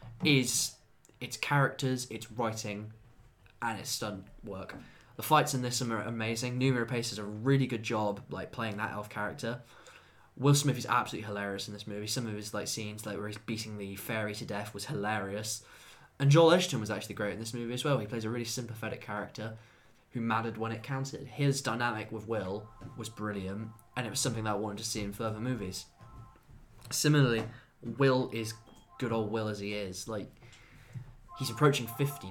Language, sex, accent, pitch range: English, male, British, 105-125 Hz